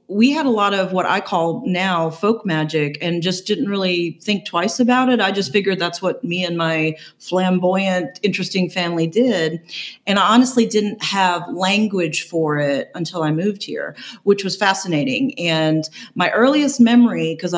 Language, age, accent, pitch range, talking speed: English, 40-59, American, 170-210 Hz, 175 wpm